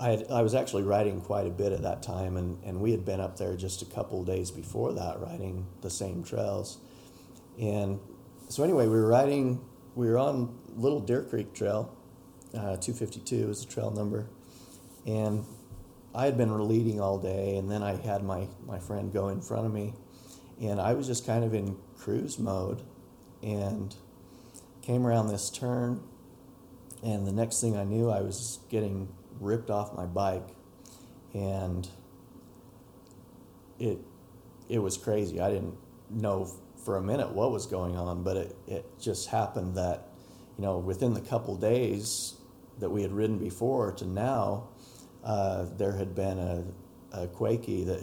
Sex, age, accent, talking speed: male, 40-59, American, 170 wpm